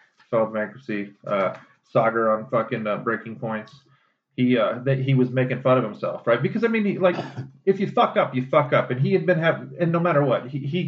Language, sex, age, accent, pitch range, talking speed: English, male, 30-49, American, 115-140 Hz, 220 wpm